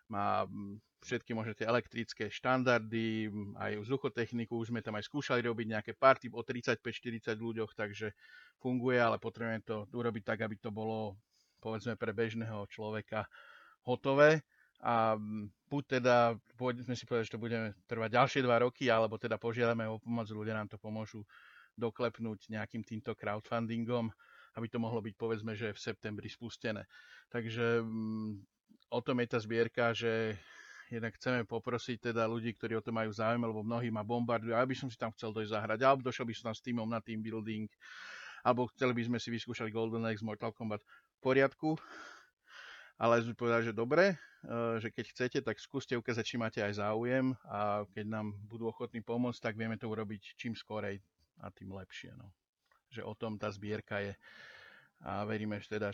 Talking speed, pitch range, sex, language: 170 wpm, 110-120 Hz, male, Slovak